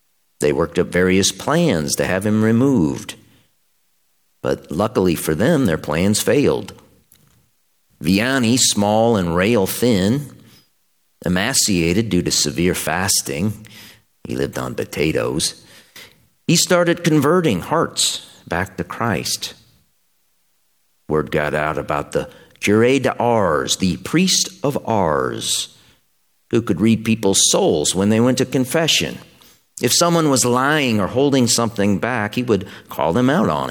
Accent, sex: American, male